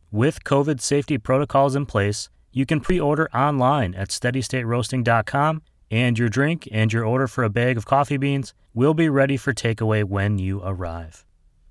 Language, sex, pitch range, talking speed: English, male, 110-140 Hz, 165 wpm